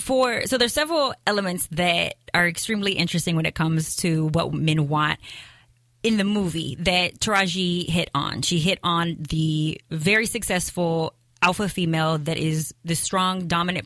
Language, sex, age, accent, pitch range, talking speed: English, female, 20-39, American, 155-195 Hz, 150 wpm